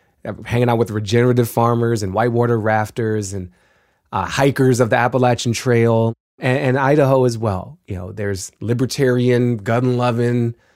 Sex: male